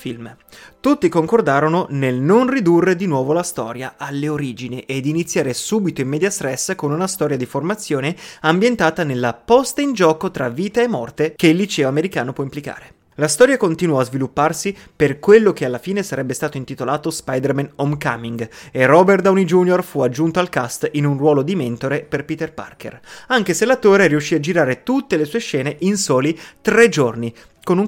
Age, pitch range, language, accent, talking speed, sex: 30-49, 140-195 Hz, Italian, native, 185 wpm, male